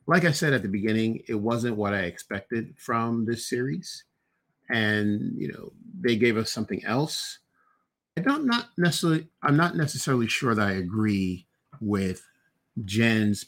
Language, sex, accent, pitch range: English, male, American, 100-130 Hz